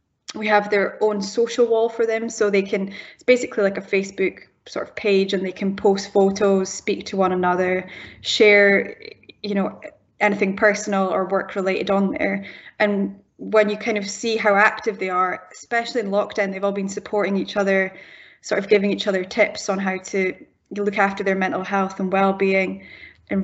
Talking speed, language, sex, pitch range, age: 190 wpm, English, female, 190-205 Hz, 10-29